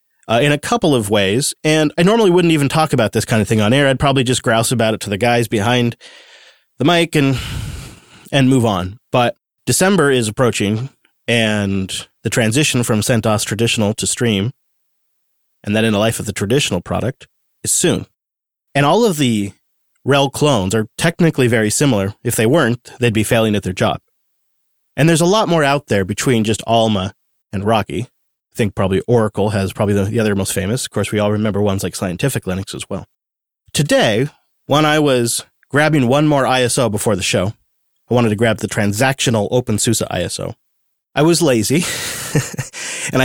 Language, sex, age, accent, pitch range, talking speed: English, male, 30-49, American, 105-145 Hz, 185 wpm